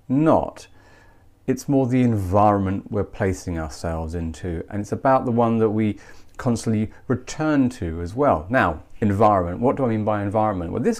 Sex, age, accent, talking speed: male, 40-59, British, 170 wpm